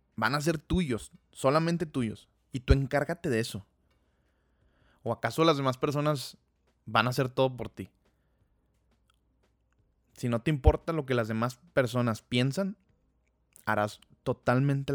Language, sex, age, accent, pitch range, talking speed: Spanish, male, 20-39, Mexican, 105-130 Hz, 135 wpm